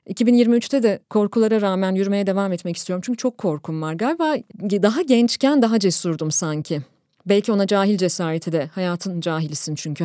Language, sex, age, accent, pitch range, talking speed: Turkish, female, 30-49, native, 175-250 Hz, 155 wpm